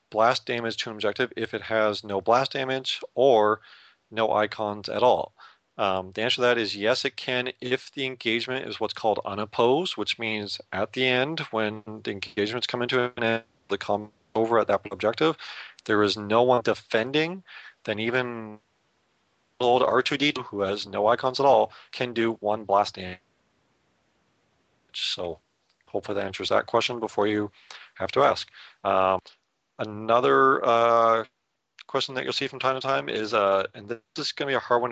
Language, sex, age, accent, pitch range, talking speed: English, male, 40-59, American, 105-125 Hz, 180 wpm